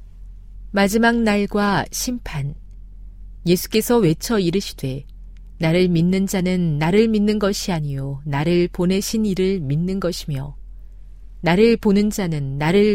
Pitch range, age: 140-200 Hz, 40-59